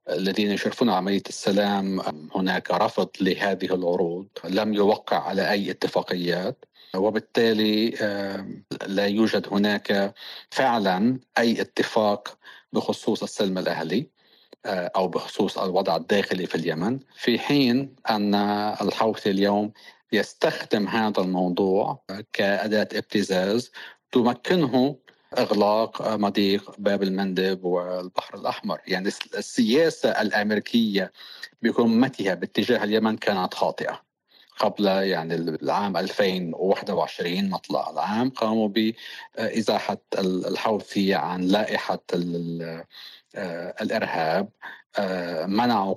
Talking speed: 90 wpm